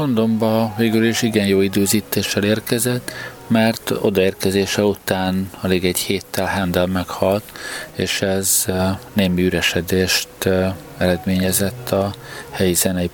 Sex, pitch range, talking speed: male, 90-110 Hz, 105 wpm